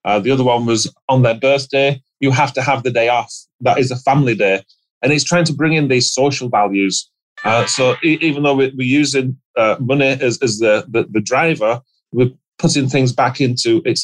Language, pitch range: English, 120-145 Hz